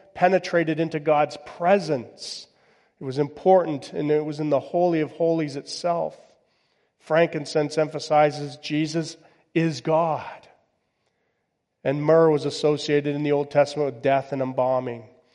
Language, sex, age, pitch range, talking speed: English, male, 40-59, 140-170 Hz, 130 wpm